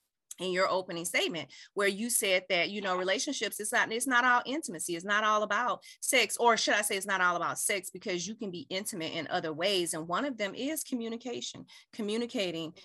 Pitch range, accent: 165-210 Hz, American